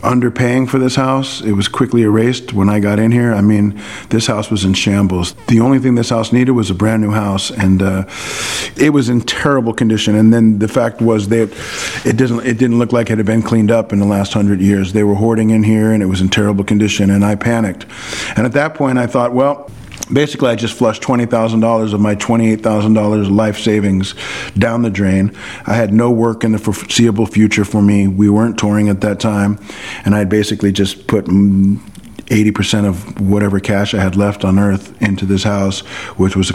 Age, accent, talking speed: 40-59, American, 215 wpm